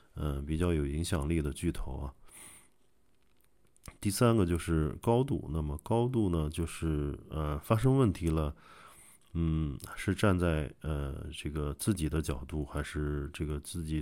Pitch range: 75-90 Hz